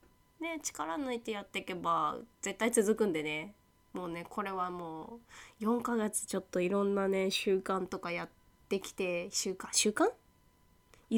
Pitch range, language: 170-235 Hz, Japanese